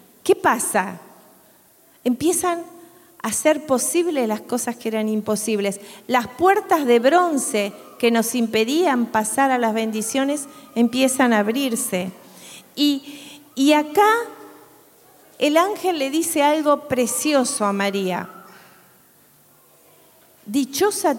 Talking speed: 105 wpm